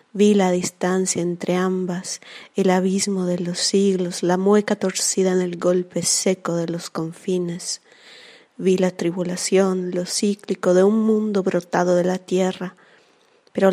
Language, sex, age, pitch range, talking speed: Italian, female, 30-49, 180-195 Hz, 145 wpm